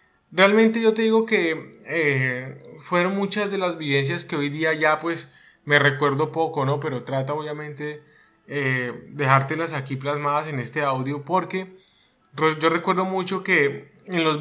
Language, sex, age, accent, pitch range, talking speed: Spanish, male, 20-39, Colombian, 140-170 Hz, 155 wpm